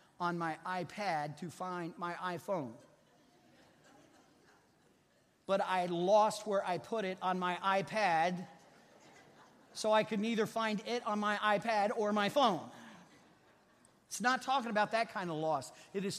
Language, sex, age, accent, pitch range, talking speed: English, male, 40-59, American, 185-235 Hz, 145 wpm